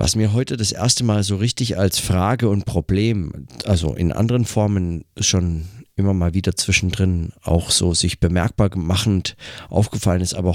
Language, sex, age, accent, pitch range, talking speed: German, male, 40-59, German, 90-110 Hz, 165 wpm